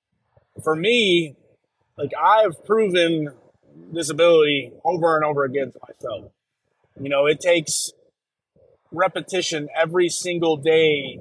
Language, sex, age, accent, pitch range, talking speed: English, male, 30-49, American, 135-165 Hz, 110 wpm